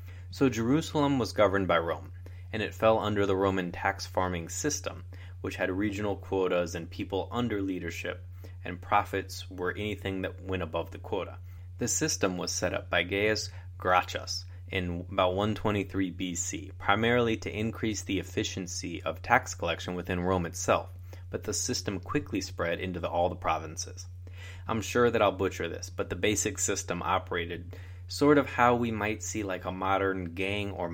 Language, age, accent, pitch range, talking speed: English, 20-39, American, 90-100 Hz, 165 wpm